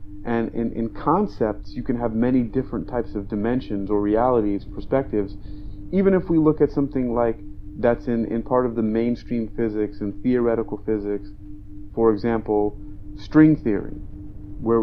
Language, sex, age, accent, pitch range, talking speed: English, male, 30-49, American, 100-120 Hz, 155 wpm